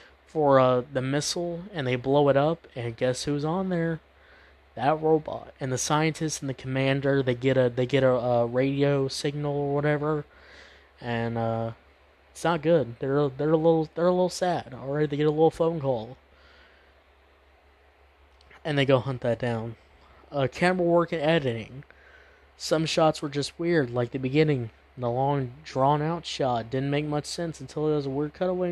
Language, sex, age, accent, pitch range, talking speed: English, male, 20-39, American, 125-155 Hz, 180 wpm